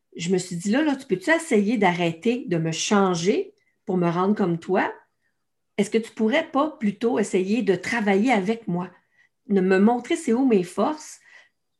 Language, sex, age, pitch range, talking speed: French, female, 50-69, 185-230 Hz, 190 wpm